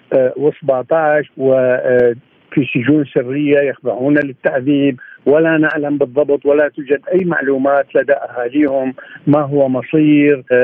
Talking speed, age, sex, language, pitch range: 100 wpm, 50-69, male, Arabic, 135-160 Hz